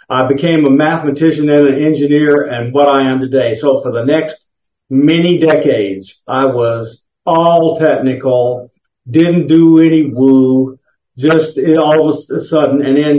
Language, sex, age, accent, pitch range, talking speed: English, male, 50-69, American, 135-155 Hz, 155 wpm